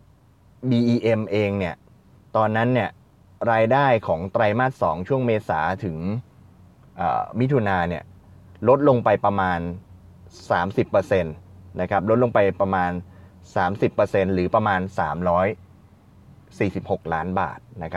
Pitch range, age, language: 90-120 Hz, 20-39, Thai